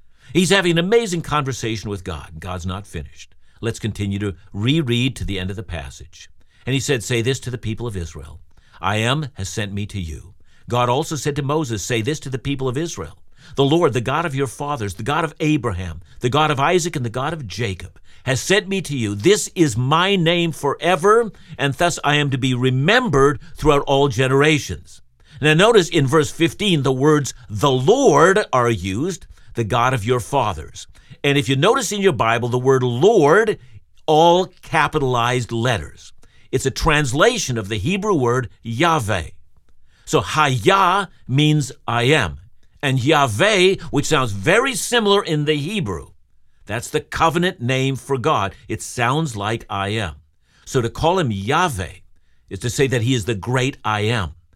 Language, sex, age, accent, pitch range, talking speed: English, male, 60-79, American, 100-150 Hz, 185 wpm